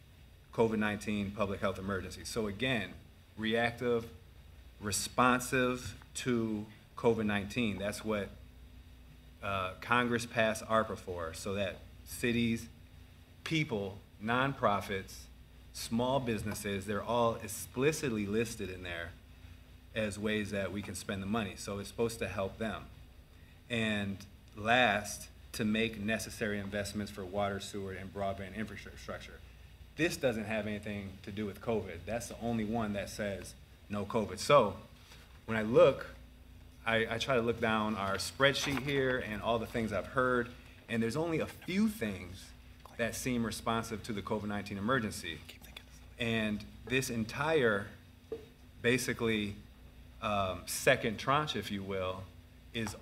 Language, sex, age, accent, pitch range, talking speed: English, male, 40-59, American, 90-115 Hz, 130 wpm